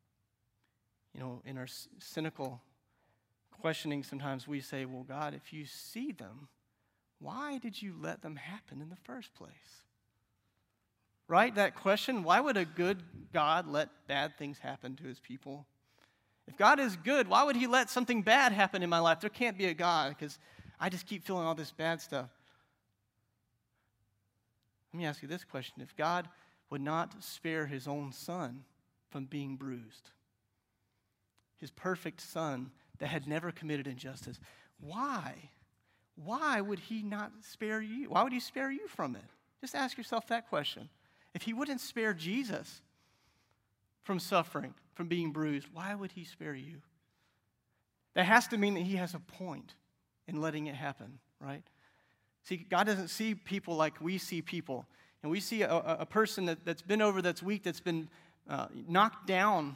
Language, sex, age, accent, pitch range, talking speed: English, male, 40-59, American, 130-195 Hz, 165 wpm